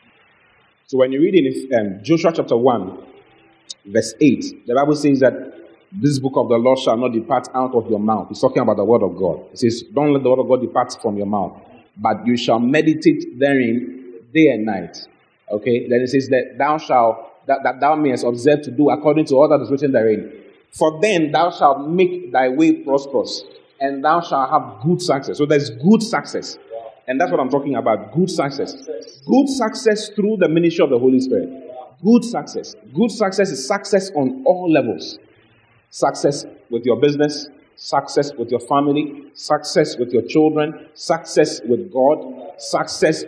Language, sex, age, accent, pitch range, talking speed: English, male, 30-49, Nigerian, 130-170 Hz, 185 wpm